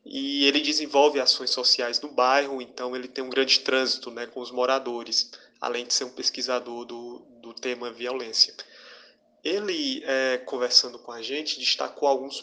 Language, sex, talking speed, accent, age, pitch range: Portuguese, male, 165 wpm, Brazilian, 20-39, 120-140 Hz